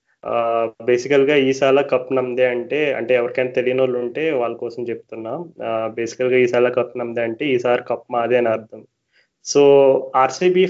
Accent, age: native, 20-39